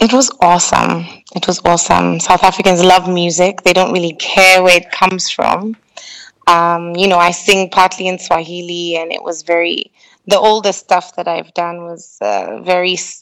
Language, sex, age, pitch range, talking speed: English, female, 20-39, 170-190 Hz, 175 wpm